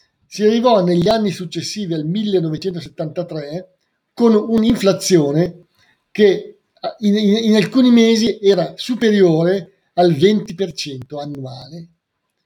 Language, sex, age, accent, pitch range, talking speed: Italian, male, 50-69, native, 170-210 Hz, 95 wpm